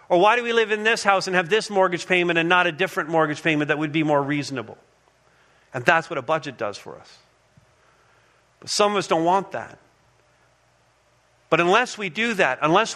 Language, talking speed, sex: English, 210 wpm, male